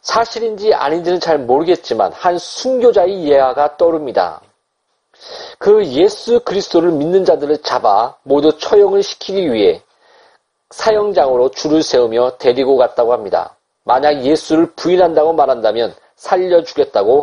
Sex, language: male, Korean